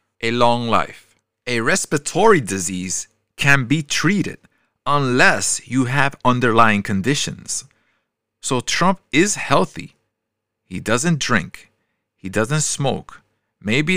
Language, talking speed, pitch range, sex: English, 105 wpm, 110-155 Hz, male